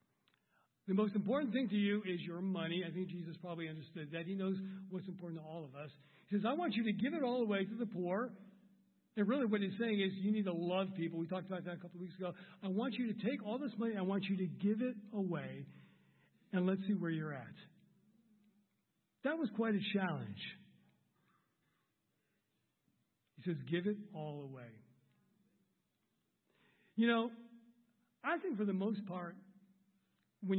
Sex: male